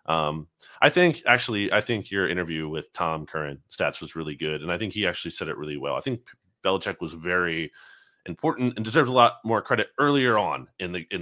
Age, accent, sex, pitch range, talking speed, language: 30-49, American, male, 85-125 Hz, 220 wpm, English